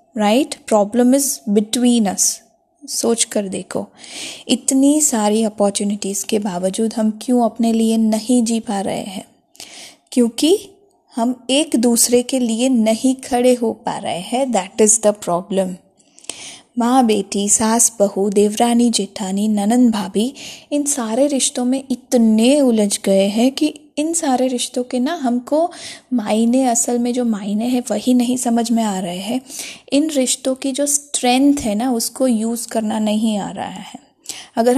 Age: 20-39